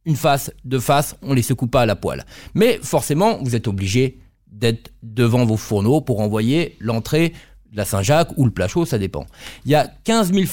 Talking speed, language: 215 wpm, French